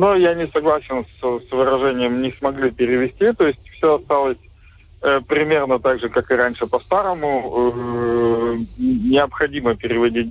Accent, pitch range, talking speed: native, 115-130 Hz, 145 wpm